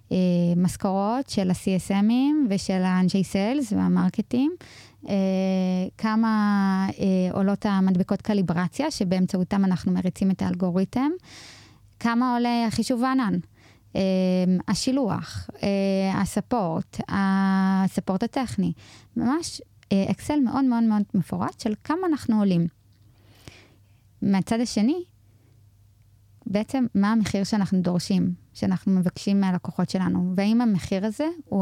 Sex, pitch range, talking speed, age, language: female, 180-220 Hz, 95 wpm, 20-39, English